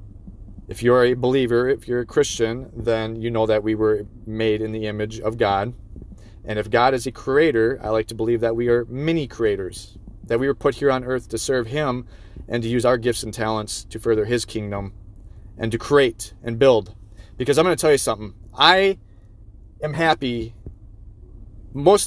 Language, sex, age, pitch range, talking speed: English, male, 30-49, 100-125 Hz, 195 wpm